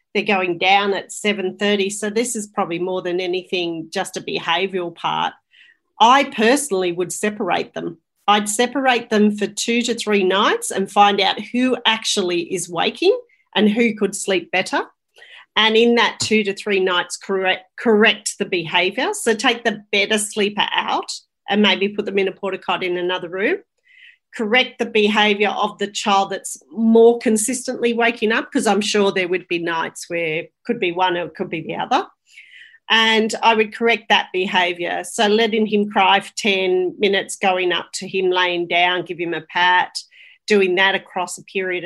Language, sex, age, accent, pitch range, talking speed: English, female, 40-59, Australian, 185-230 Hz, 180 wpm